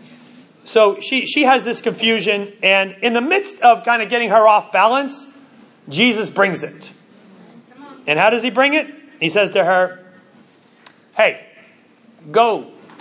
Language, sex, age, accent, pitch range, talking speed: English, male, 30-49, American, 200-260 Hz, 150 wpm